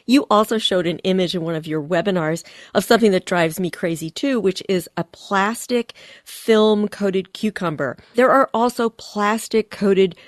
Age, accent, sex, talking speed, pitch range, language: 40-59, American, female, 160 wpm, 170-230 Hz, English